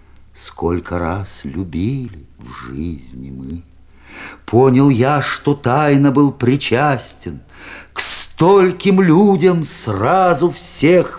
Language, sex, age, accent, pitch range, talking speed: Russian, male, 50-69, native, 80-115 Hz, 90 wpm